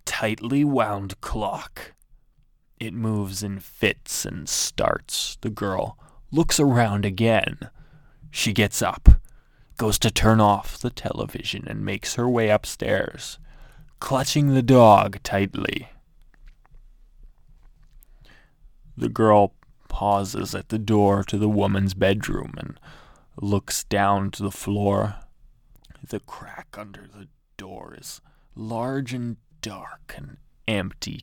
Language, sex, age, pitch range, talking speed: English, male, 20-39, 100-130 Hz, 115 wpm